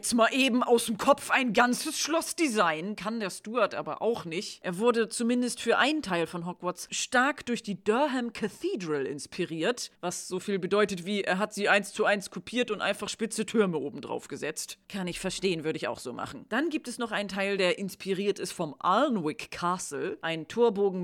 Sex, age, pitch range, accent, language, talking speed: female, 40-59, 185-245 Hz, German, German, 195 wpm